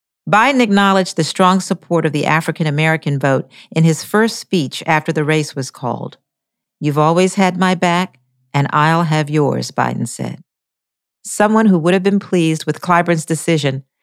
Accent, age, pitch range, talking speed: American, 50-69, 145-185 Hz, 165 wpm